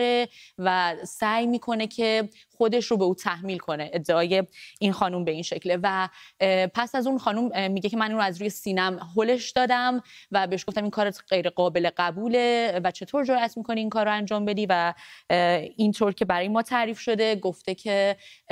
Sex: female